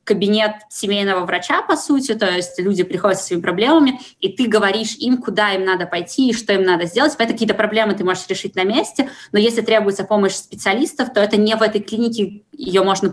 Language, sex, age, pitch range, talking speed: Russian, female, 20-39, 185-220 Hz, 205 wpm